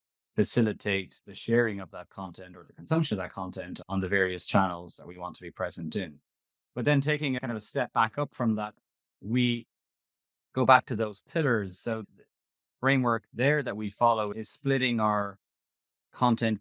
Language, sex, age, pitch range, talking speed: English, male, 30-49, 95-120 Hz, 190 wpm